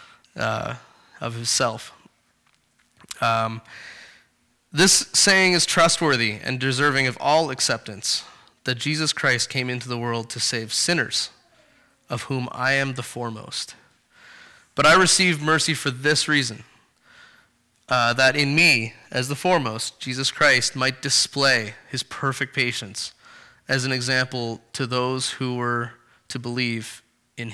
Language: English